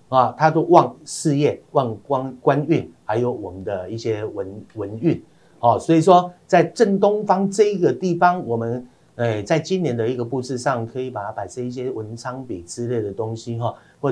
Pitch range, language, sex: 115-135 Hz, Chinese, male